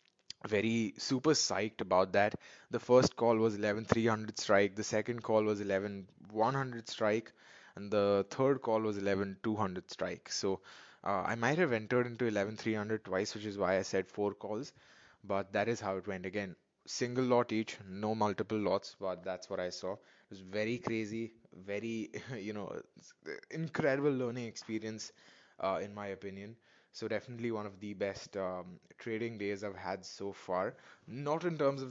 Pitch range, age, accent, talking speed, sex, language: 100-130 Hz, 20-39, Indian, 175 wpm, male, English